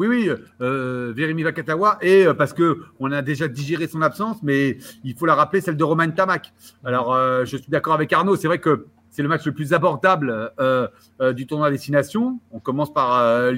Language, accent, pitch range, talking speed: French, French, 135-170 Hz, 215 wpm